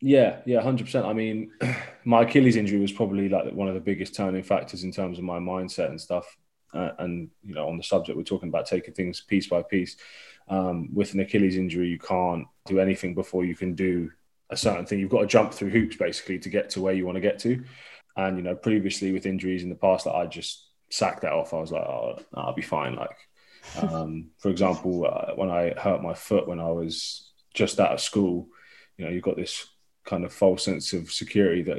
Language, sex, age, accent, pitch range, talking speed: English, male, 20-39, British, 90-100 Hz, 230 wpm